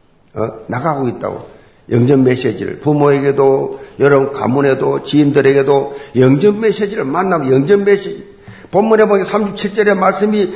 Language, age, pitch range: Korean, 50-69, 145-230 Hz